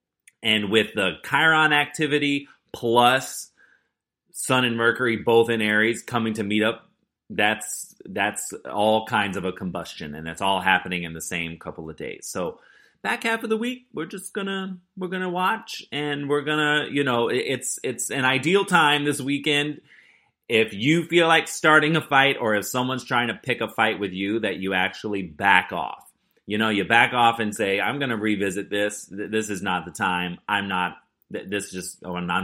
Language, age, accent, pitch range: English, 30-49, American, 100-135 Hz